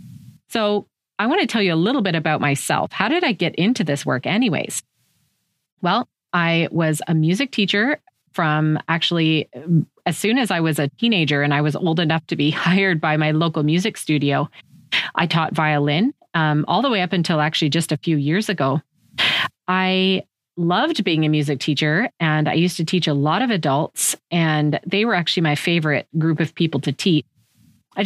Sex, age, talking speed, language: female, 30-49, 190 wpm, English